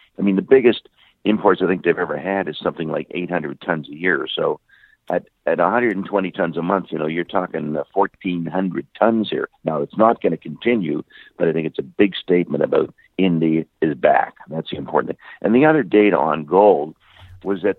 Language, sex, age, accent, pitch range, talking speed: English, male, 50-69, American, 80-105 Hz, 200 wpm